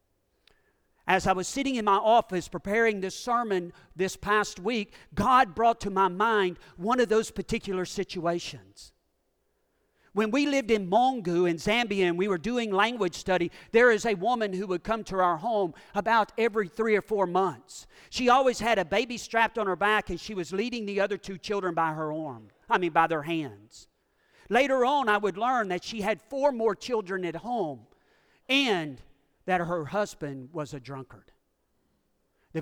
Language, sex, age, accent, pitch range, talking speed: English, male, 40-59, American, 165-220 Hz, 180 wpm